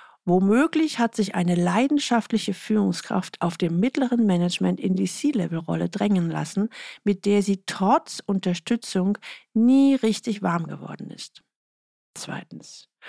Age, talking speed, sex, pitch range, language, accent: 50-69, 120 wpm, female, 185-240 Hz, German, German